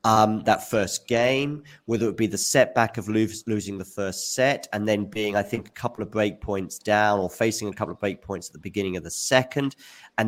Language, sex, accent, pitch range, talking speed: English, male, British, 100-135 Hz, 240 wpm